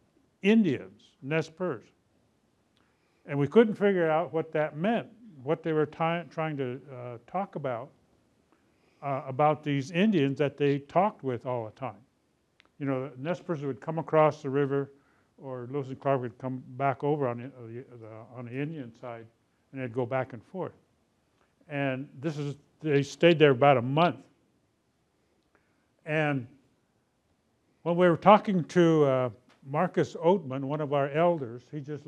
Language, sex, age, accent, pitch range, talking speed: English, male, 60-79, American, 130-165 Hz, 155 wpm